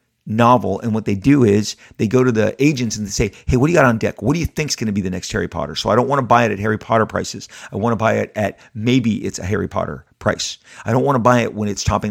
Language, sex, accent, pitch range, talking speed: English, male, American, 105-125 Hz, 320 wpm